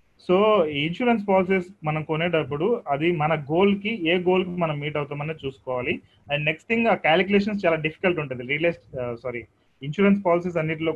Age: 30-49